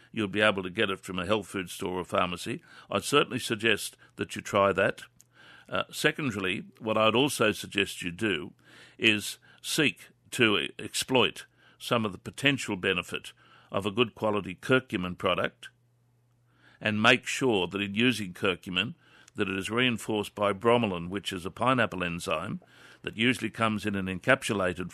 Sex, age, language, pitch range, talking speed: male, 60-79, English, 100-120 Hz, 160 wpm